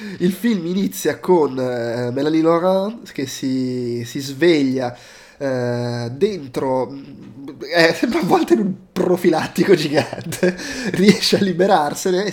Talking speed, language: 120 wpm, Italian